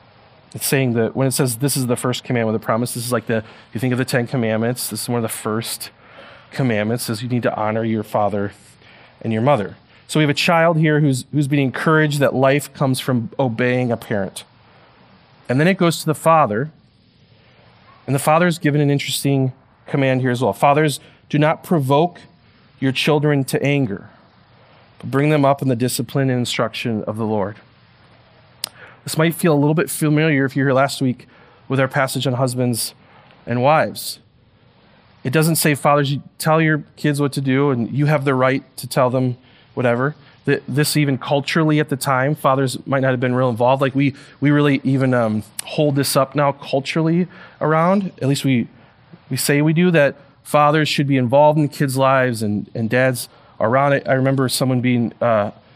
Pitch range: 125-145 Hz